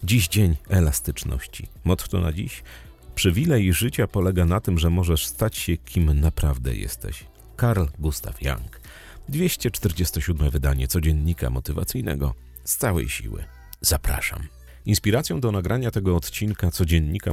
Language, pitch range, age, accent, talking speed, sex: Polish, 75-105 Hz, 40-59, native, 125 wpm, male